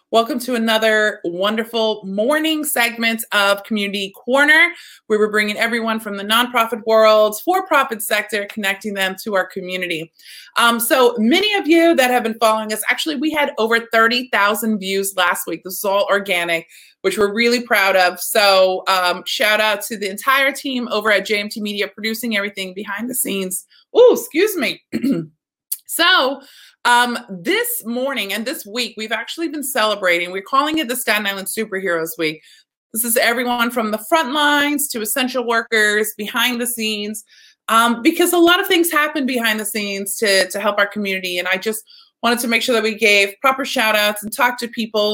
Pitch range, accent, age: 205-260 Hz, American, 30-49